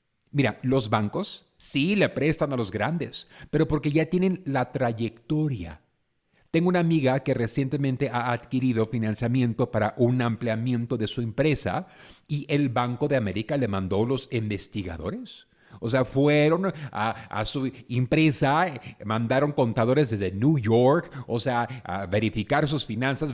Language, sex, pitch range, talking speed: Spanish, male, 115-155 Hz, 145 wpm